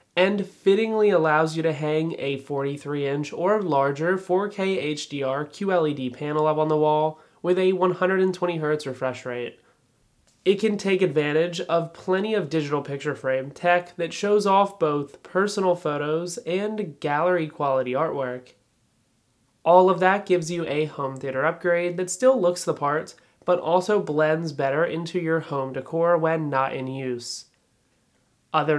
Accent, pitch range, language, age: American, 145-185 Hz, English, 20-39